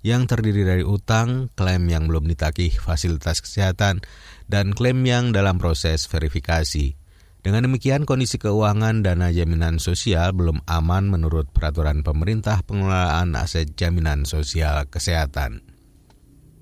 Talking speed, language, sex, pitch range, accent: 120 wpm, Indonesian, male, 80-110 Hz, native